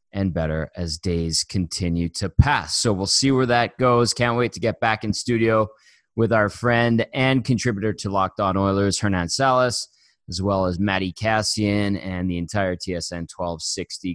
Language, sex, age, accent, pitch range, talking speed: English, male, 30-49, American, 100-145 Hz, 175 wpm